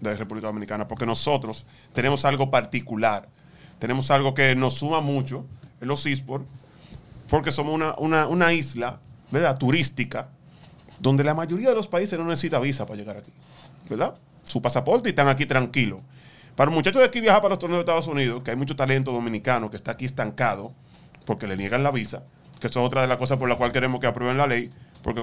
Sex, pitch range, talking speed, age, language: male, 125-155 Hz, 205 wpm, 30-49, Spanish